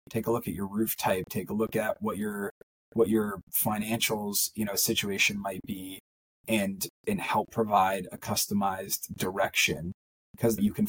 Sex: male